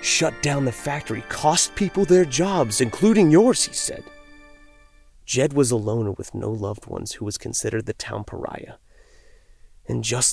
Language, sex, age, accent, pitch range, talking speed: English, male, 30-49, American, 100-125 Hz, 165 wpm